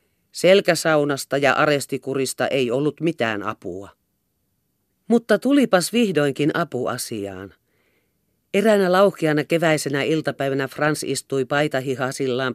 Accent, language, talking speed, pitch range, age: native, Finnish, 90 wpm, 125-185 Hz, 40-59